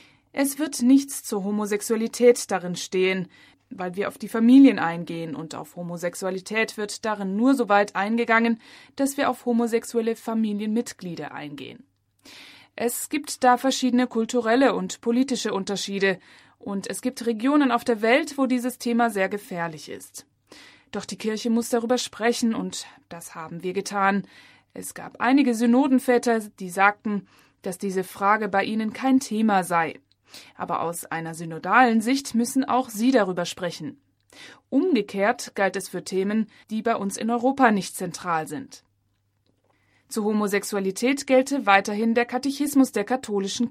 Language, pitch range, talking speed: German, 190-245 Hz, 145 wpm